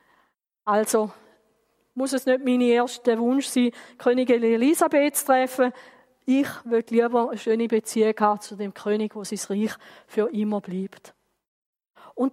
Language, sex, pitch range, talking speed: German, female, 215-265 Hz, 135 wpm